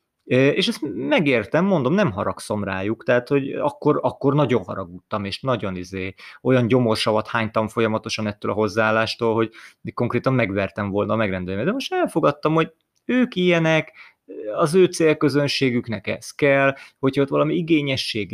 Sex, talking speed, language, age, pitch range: male, 145 wpm, Hungarian, 30-49, 110-145 Hz